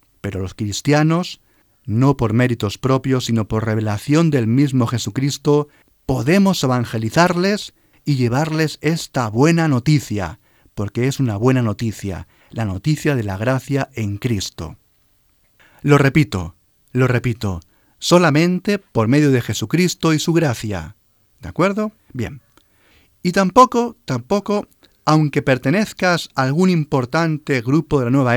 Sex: male